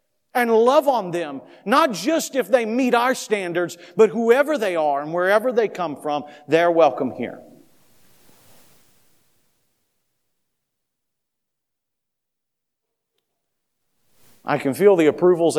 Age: 40-59